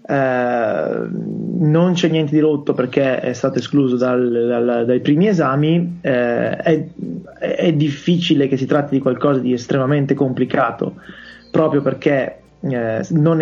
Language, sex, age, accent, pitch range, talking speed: Italian, male, 20-39, native, 125-150 Hz, 130 wpm